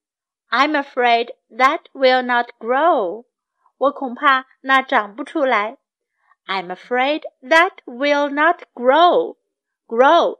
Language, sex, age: Chinese, female, 50-69